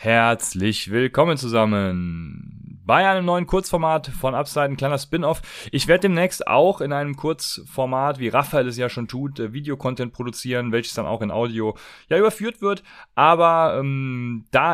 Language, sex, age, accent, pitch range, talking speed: German, male, 30-49, German, 115-155 Hz, 155 wpm